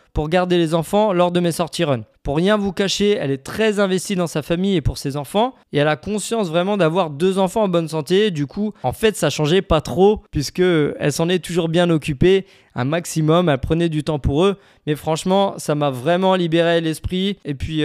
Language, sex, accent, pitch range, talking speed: French, male, French, 150-195 Hz, 225 wpm